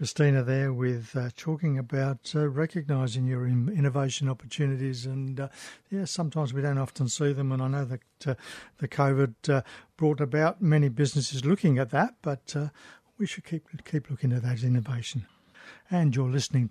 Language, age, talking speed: English, 60-79, 175 wpm